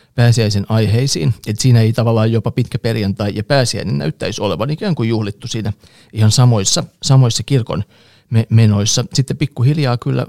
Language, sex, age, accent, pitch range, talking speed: Finnish, male, 30-49, native, 105-125 Hz, 145 wpm